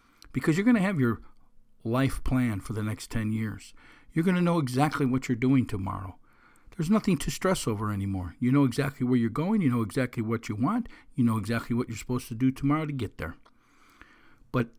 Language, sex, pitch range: English, male, 110-135 Hz